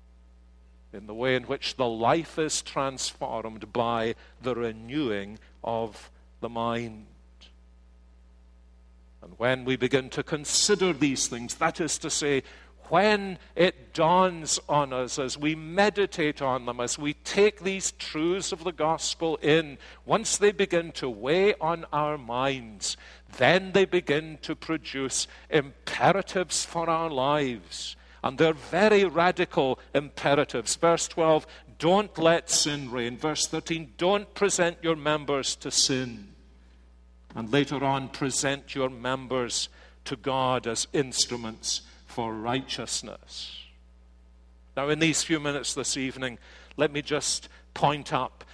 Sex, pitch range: male, 115-160 Hz